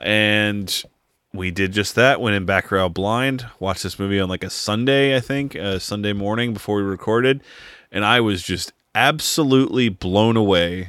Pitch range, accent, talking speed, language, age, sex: 90-110 Hz, American, 170 wpm, English, 30-49, male